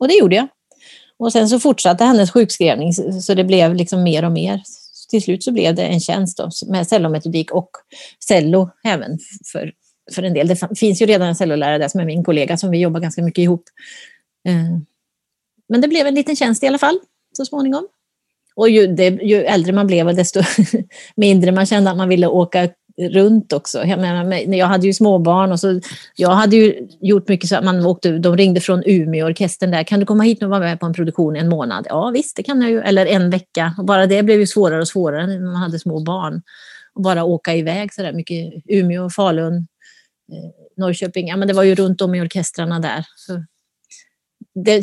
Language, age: Swedish, 30-49